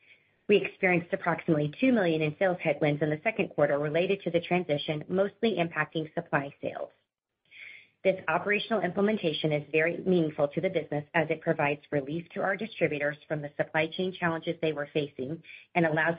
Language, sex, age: English, female, 40-59